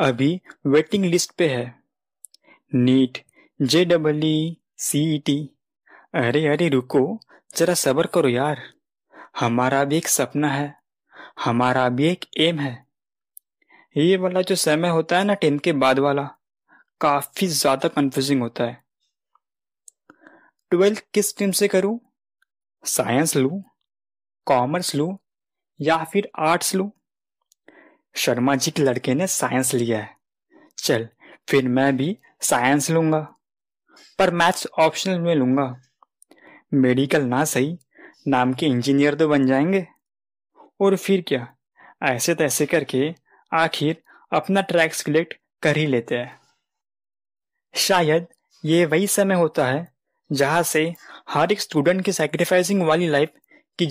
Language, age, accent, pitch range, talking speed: Hindi, 20-39, native, 135-175 Hz, 125 wpm